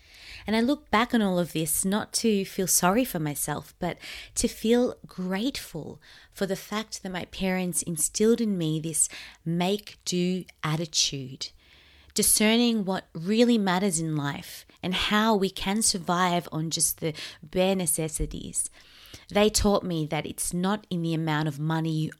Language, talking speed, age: English, 155 wpm, 20-39